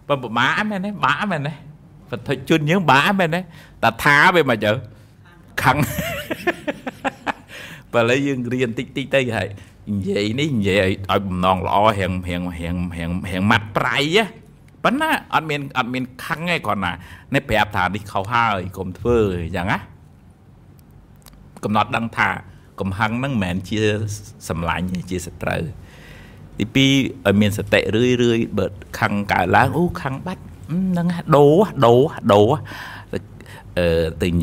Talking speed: 40 wpm